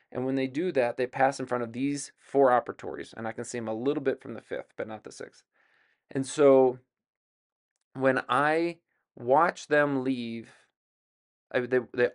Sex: male